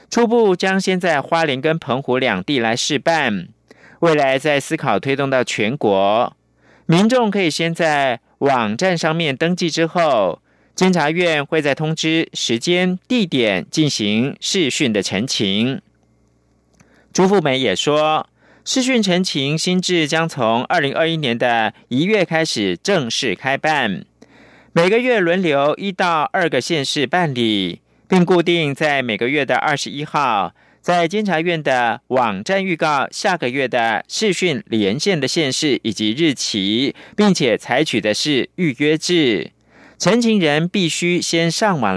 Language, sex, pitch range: Chinese, male, 135-180 Hz